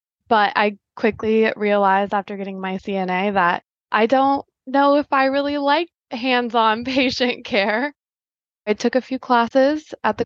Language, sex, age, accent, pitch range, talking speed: English, female, 20-39, American, 200-235 Hz, 150 wpm